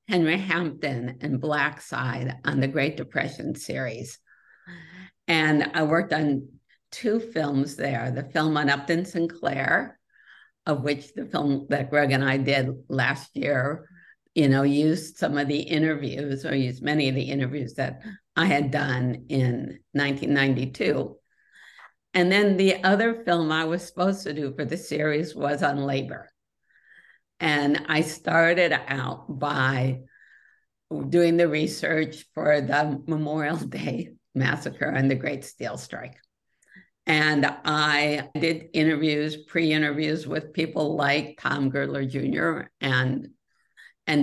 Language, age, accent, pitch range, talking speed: English, 50-69, American, 140-160 Hz, 135 wpm